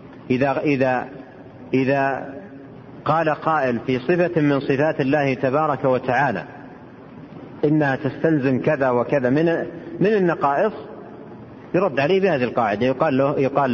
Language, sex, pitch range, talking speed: Arabic, male, 130-165 Hz, 105 wpm